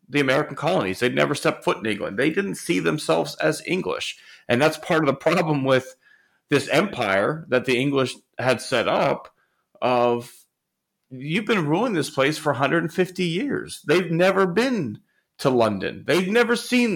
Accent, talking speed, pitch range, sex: American, 165 wpm, 110-160 Hz, male